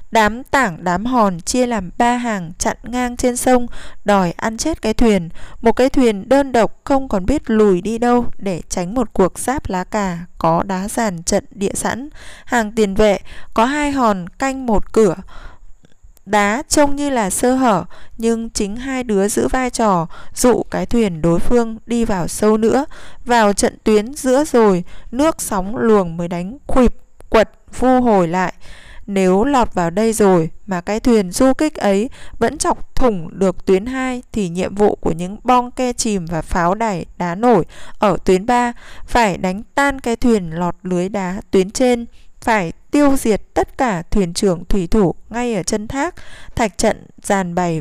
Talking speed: 185 wpm